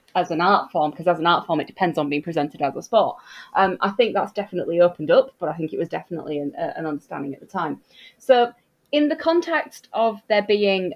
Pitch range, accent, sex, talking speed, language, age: 175-230 Hz, British, female, 240 wpm, English, 30-49